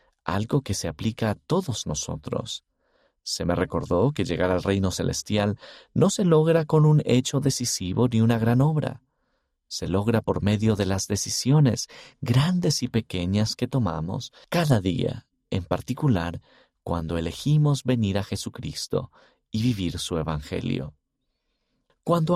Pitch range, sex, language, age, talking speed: 90-135 Hz, male, Spanish, 40-59, 140 wpm